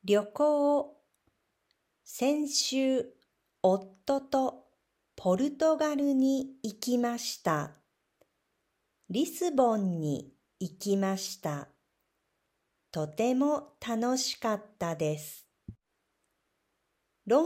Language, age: Japanese, 50-69